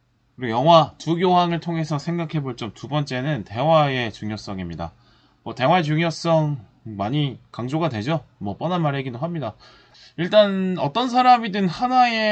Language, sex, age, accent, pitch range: Korean, male, 20-39, native, 115-170 Hz